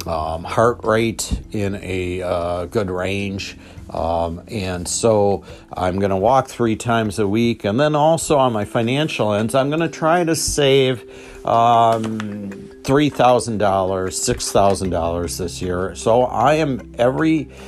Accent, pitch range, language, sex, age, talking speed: American, 95-120 Hz, English, male, 50-69, 140 wpm